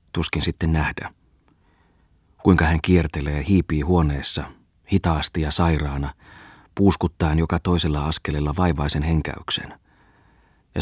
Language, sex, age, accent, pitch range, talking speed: Finnish, male, 30-49, native, 75-90 Hz, 100 wpm